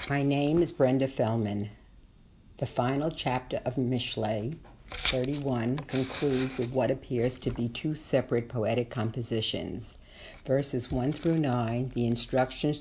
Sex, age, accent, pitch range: female, 60-79, American, 120-140 Hz